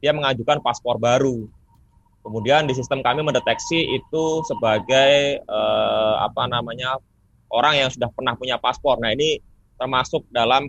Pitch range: 110-140 Hz